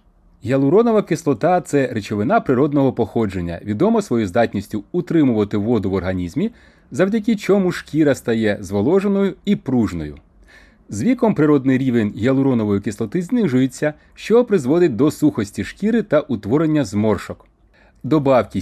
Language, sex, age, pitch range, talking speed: Ukrainian, male, 30-49, 110-165 Hz, 120 wpm